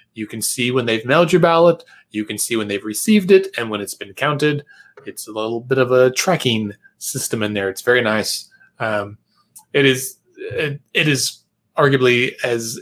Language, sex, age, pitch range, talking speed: English, male, 30-49, 115-150 Hz, 190 wpm